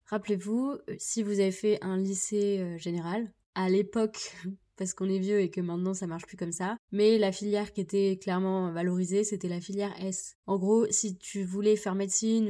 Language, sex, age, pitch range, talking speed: French, female, 20-39, 185-220 Hz, 190 wpm